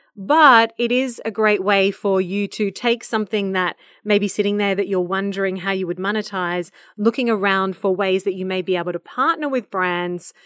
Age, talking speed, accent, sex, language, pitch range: 30-49, 205 wpm, Australian, female, English, 185-230 Hz